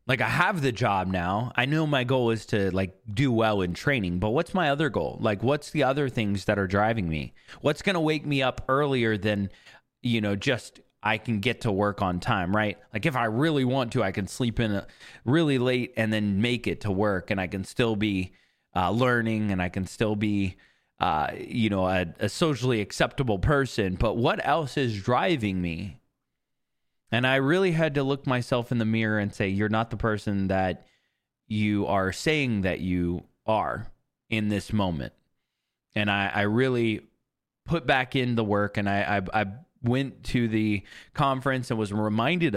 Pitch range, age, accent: 100-130 Hz, 20-39, American